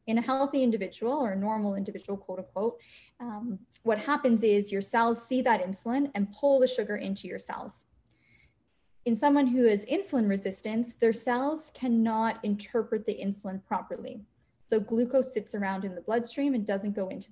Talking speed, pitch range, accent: 175 wpm, 200-250 Hz, American